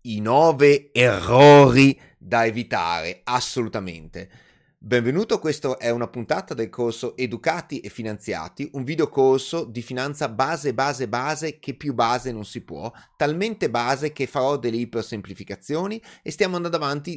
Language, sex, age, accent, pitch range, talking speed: Italian, male, 30-49, native, 115-145 Hz, 140 wpm